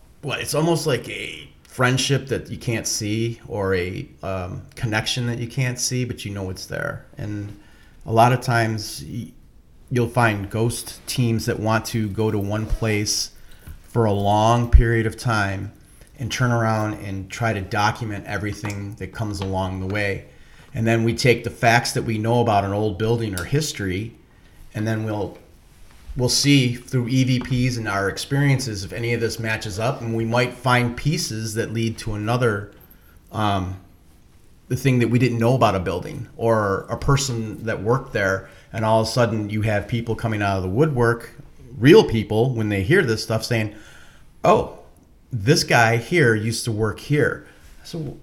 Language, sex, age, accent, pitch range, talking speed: English, male, 30-49, American, 105-125 Hz, 175 wpm